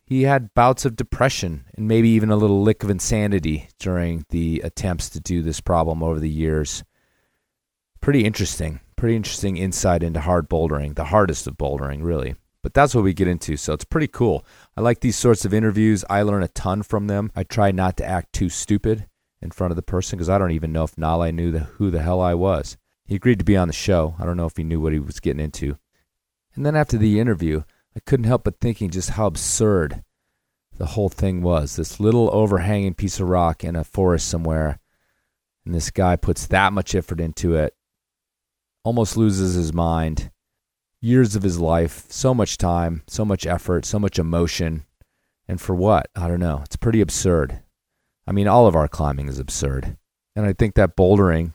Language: English